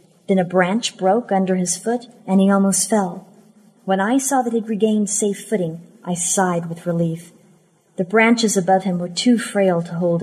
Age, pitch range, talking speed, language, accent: 40-59, 180-220 Hz, 190 wpm, English, American